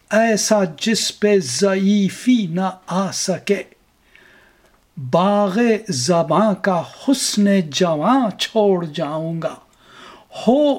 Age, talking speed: 50-69, 85 wpm